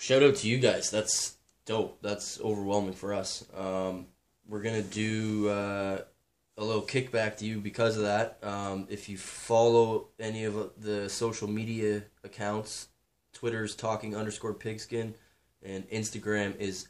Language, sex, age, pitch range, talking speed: English, male, 20-39, 100-110 Hz, 150 wpm